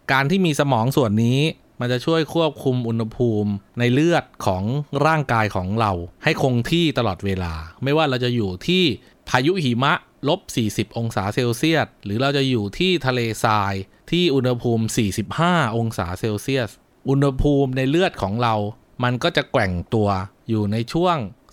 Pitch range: 110-145 Hz